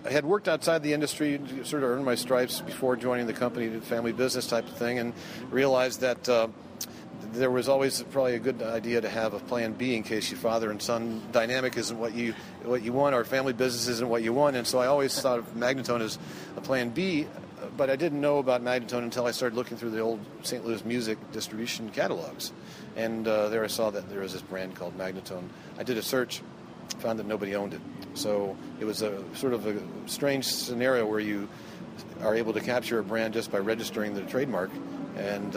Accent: American